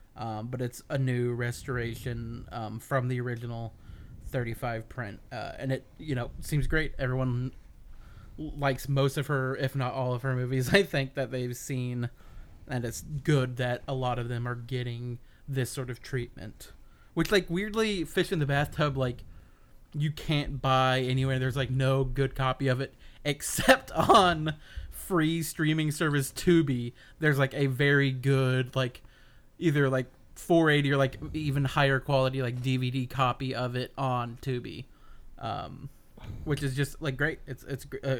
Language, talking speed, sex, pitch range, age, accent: English, 165 wpm, male, 125-145 Hz, 30-49, American